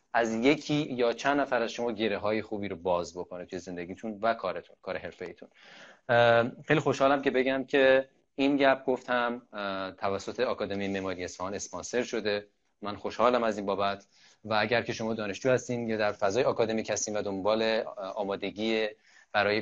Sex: male